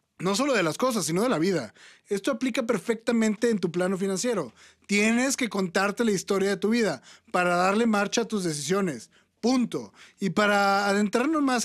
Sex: male